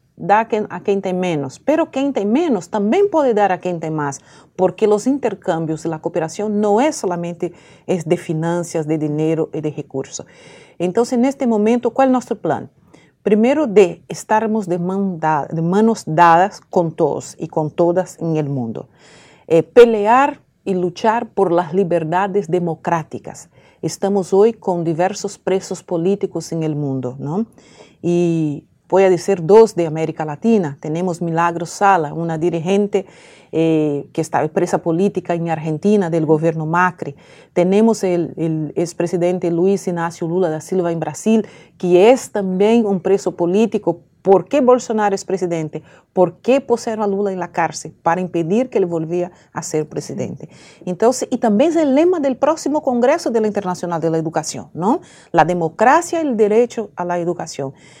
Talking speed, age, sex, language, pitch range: 165 wpm, 50-69, female, English, 165-215 Hz